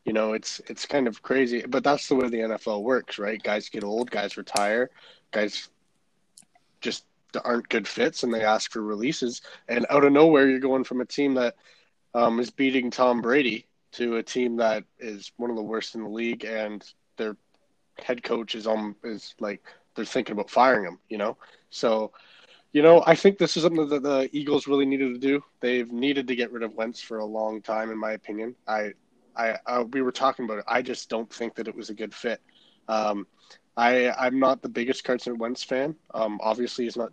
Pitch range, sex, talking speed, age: 110-135 Hz, male, 215 wpm, 20-39